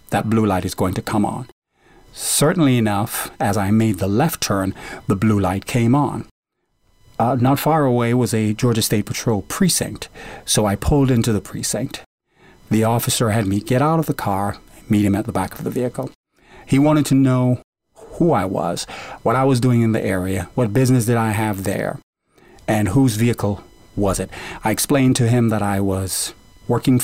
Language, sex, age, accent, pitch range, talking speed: English, male, 40-59, American, 100-125 Hz, 195 wpm